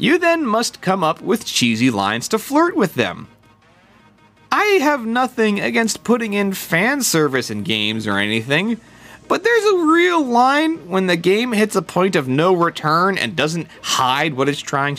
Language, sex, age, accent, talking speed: English, male, 30-49, American, 175 wpm